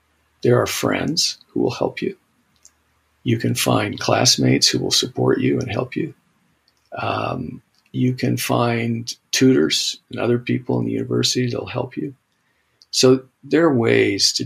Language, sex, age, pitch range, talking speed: English, male, 50-69, 110-130 Hz, 160 wpm